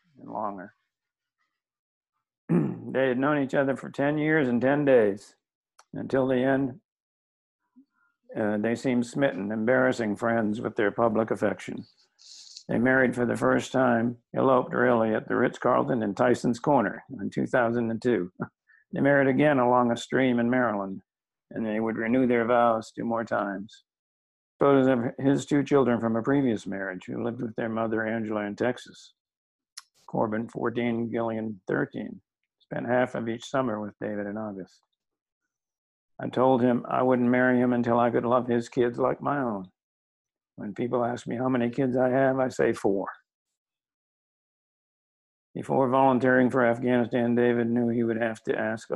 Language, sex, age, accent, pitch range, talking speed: English, male, 50-69, American, 115-130 Hz, 160 wpm